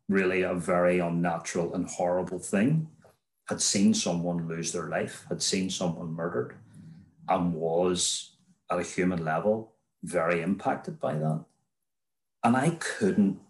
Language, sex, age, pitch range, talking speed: English, male, 40-59, 85-105 Hz, 135 wpm